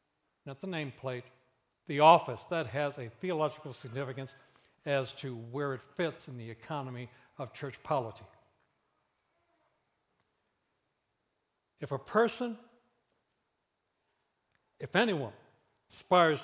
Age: 60-79